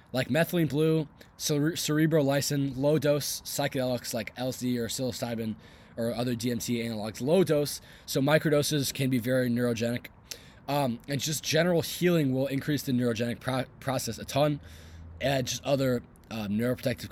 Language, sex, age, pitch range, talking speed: English, male, 20-39, 115-155 Hz, 145 wpm